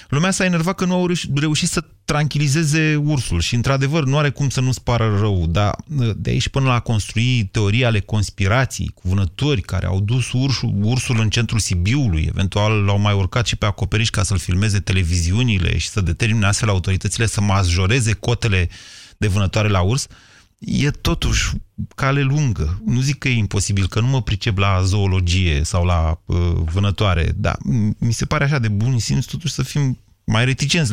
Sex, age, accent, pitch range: male, 30-49, native, 100-130 Hz